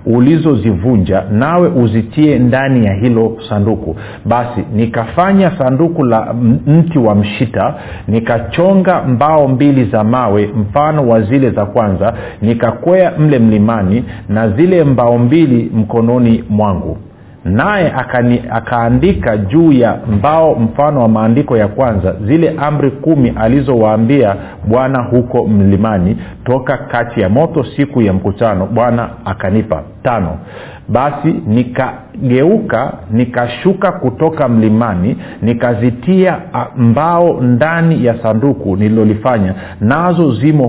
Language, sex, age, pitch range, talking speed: Swahili, male, 50-69, 110-140 Hz, 110 wpm